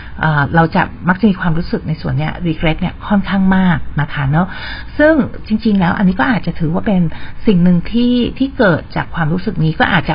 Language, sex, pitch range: Thai, female, 160-205 Hz